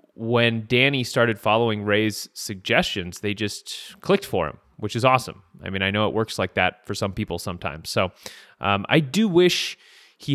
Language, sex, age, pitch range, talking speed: English, male, 30-49, 105-140 Hz, 185 wpm